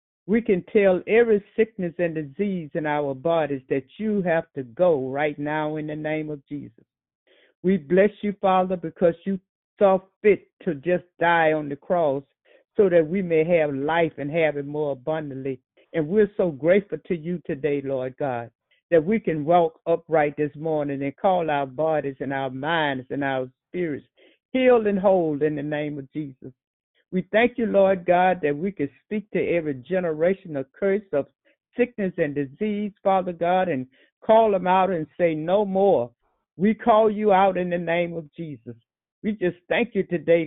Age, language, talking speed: 60-79, English, 180 wpm